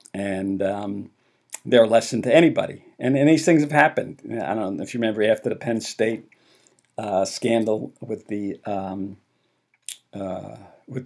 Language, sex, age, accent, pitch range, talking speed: English, male, 50-69, American, 105-135 Hz, 140 wpm